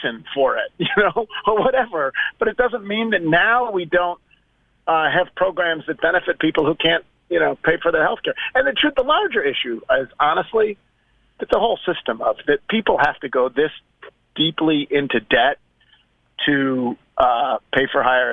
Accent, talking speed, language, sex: American, 180 wpm, English, male